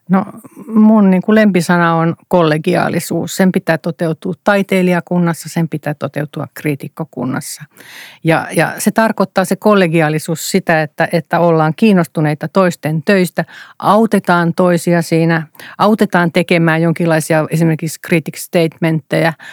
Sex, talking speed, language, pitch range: female, 110 wpm, Finnish, 165-195 Hz